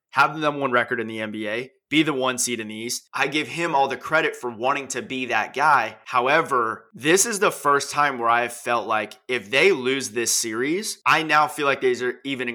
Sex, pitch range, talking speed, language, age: male, 120-160 Hz, 235 wpm, English, 20-39